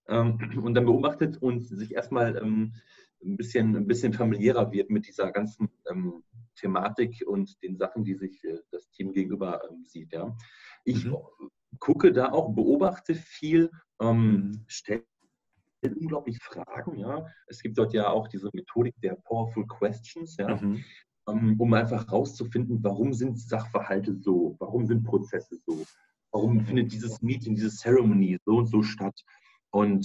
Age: 40-59